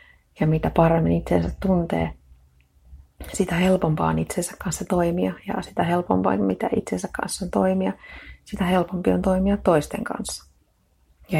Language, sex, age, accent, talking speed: Finnish, female, 30-49, native, 135 wpm